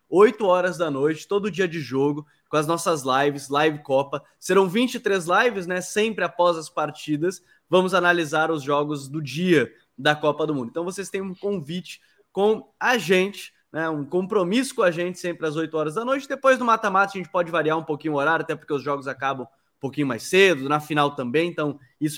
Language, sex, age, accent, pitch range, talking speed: Portuguese, male, 20-39, Brazilian, 150-200 Hz, 210 wpm